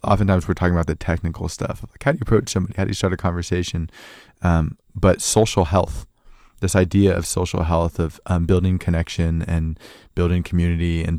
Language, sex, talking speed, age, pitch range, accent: English, male, 195 wpm, 20-39, 85-100 Hz, American